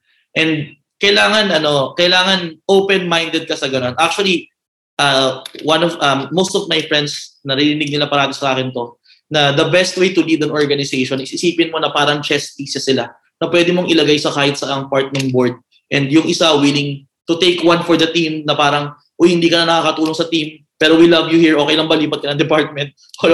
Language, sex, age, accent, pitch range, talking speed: Filipino, male, 20-39, native, 145-180 Hz, 205 wpm